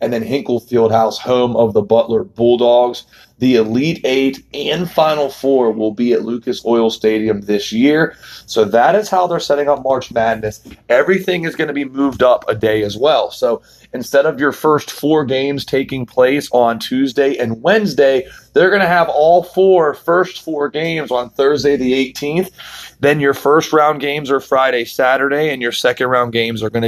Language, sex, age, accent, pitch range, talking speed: English, male, 30-49, American, 120-145 Hz, 190 wpm